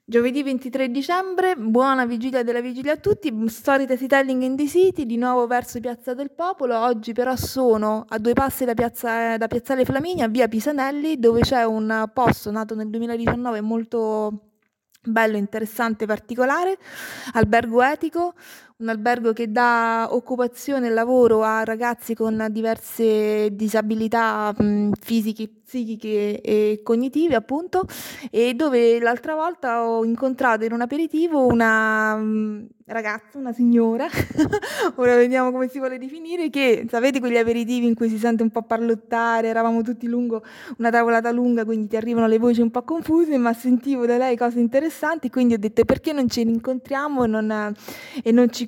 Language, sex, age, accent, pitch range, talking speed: Italian, female, 30-49, native, 225-260 Hz, 155 wpm